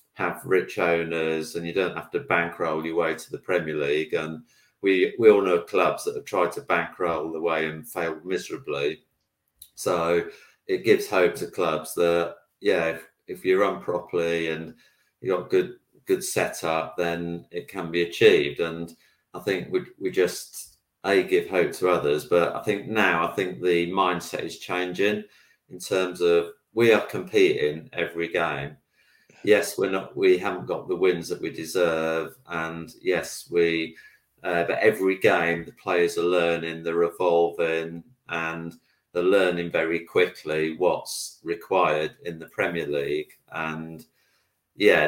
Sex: male